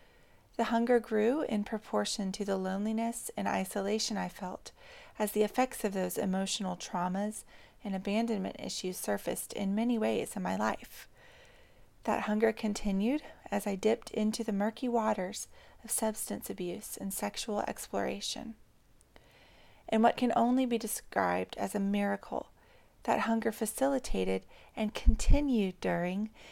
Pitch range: 195-240 Hz